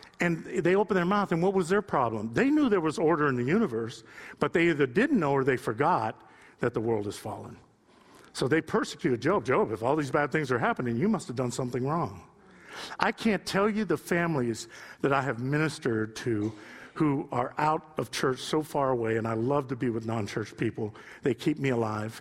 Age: 50-69